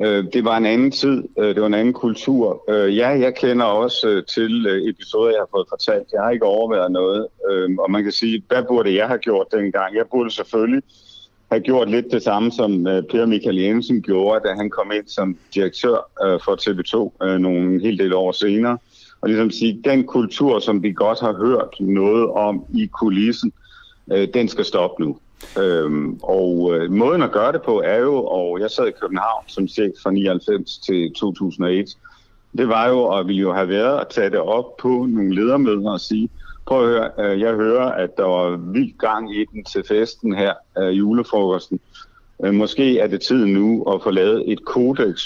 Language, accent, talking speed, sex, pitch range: Danish, native, 195 wpm, male, 100-125 Hz